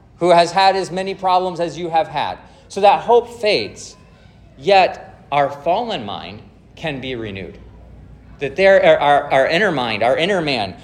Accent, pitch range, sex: American, 145-195 Hz, male